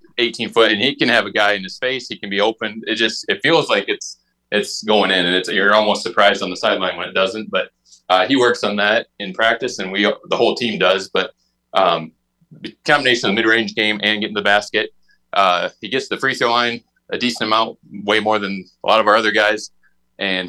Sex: male